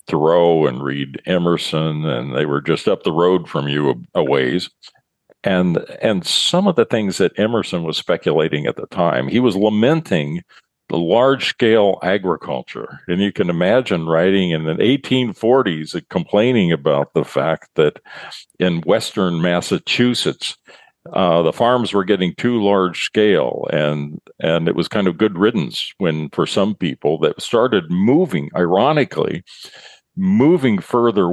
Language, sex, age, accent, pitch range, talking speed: English, male, 50-69, American, 80-105 Hz, 145 wpm